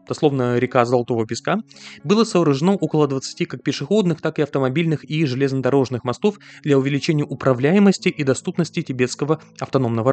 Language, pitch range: Russian, 130-165 Hz